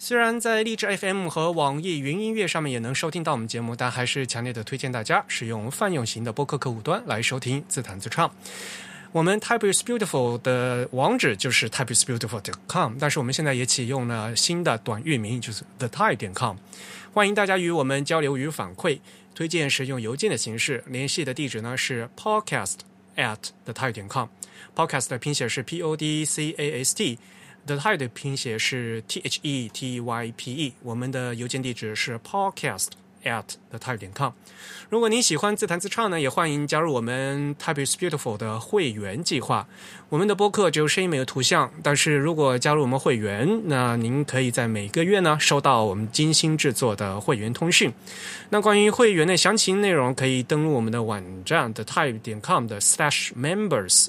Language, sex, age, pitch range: Chinese, male, 20-39, 120-165 Hz